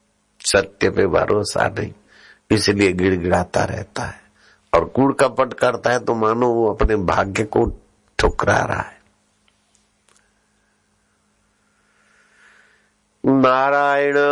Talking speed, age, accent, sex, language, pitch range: 95 wpm, 60-79, native, male, Hindi, 95-130 Hz